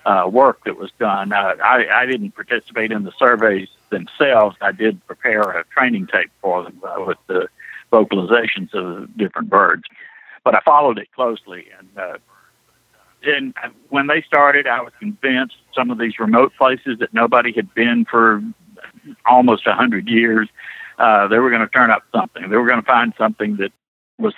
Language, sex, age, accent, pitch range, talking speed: English, male, 60-79, American, 105-125 Hz, 175 wpm